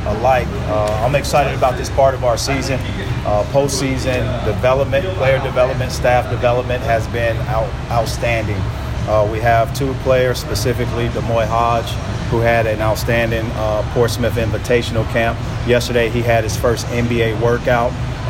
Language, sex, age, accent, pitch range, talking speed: English, male, 40-59, American, 115-125 Hz, 145 wpm